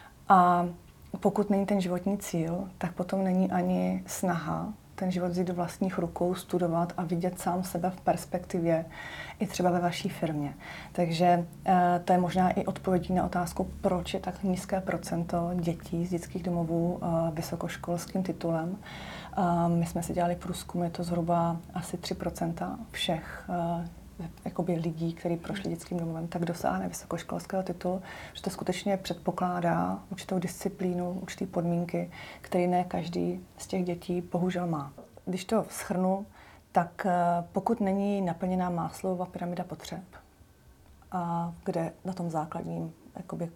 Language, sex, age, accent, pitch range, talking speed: Czech, female, 30-49, native, 170-190 Hz, 140 wpm